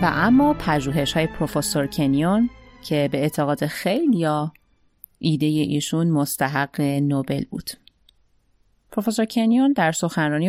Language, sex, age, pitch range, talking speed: Persian, female, 30-49, 150-210 Hz, 110 wpm